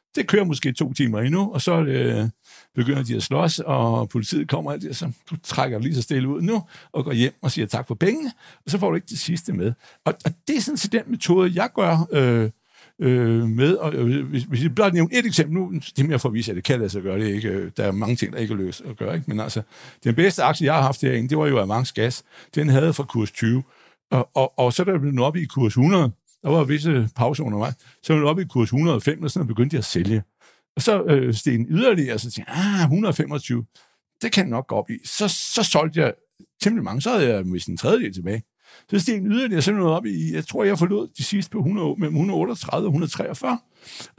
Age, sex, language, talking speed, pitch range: 60-79, male, Danish, 260 wpm, 120-170 Hz